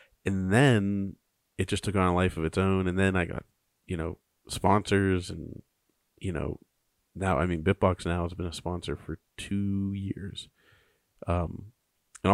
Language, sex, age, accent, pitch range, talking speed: English, male, 30-49, American, 85-100 Hz, 170 wpm